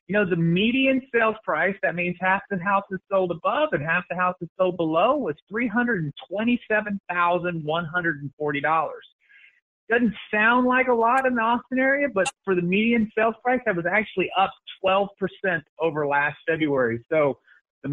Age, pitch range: 30-49, 180-240 Hz